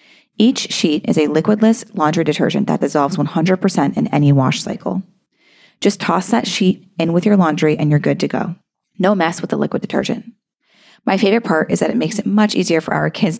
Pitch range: 160-215 Hz